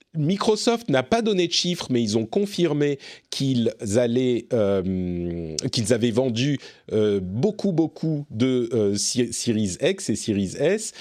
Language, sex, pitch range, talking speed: French, male, 110-150 Hz, 130 wpm